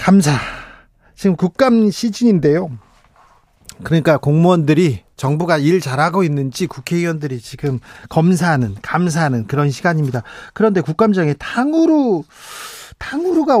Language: Korean